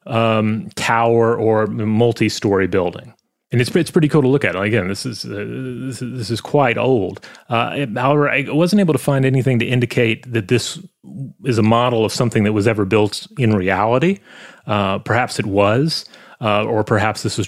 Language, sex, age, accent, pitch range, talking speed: English, male, 30-49, American, 105-130 Hz, 190 wpm